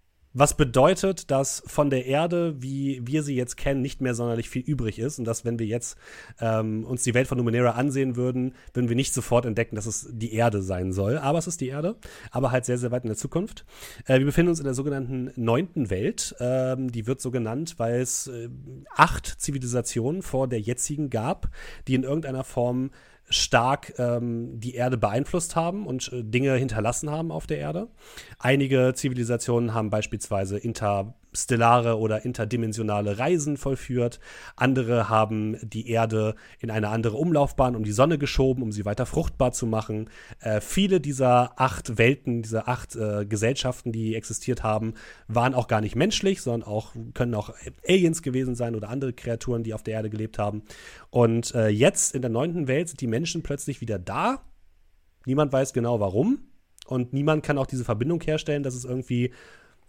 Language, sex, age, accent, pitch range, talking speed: German, male, 30-49, German, 115-135 Hz, 180 wpm